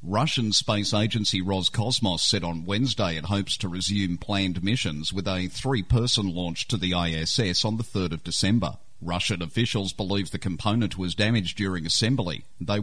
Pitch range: 90-110 Hz